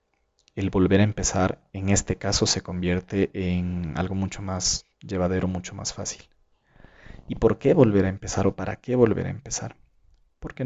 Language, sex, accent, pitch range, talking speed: Spanish, male, Mexican, 90-100 Hz, 170 wpm